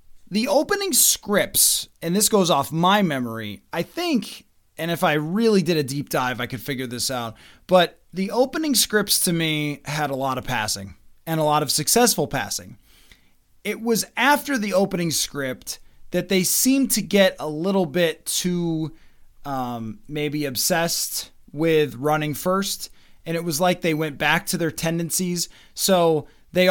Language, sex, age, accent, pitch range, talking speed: English, male, 20-39, American, 130-185 Hz, 165 wpm